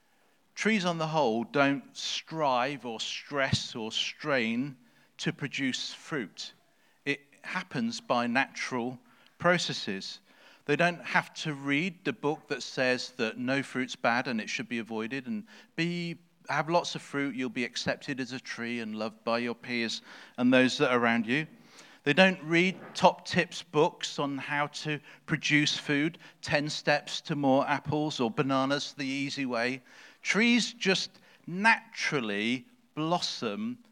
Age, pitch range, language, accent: 40-59, 125-180 Hz, English, British